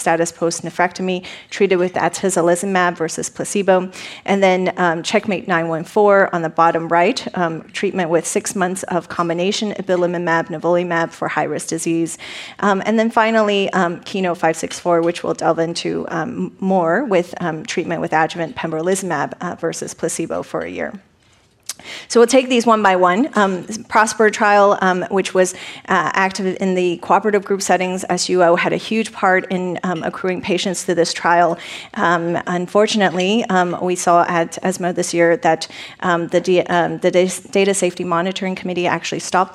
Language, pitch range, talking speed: English, 170-190 Hz, 160 wpm